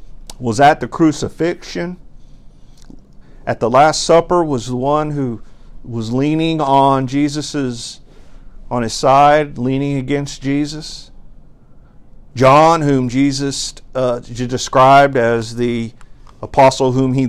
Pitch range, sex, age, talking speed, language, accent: 115-140 Hz, male, 50-69, 110 wpm, English, American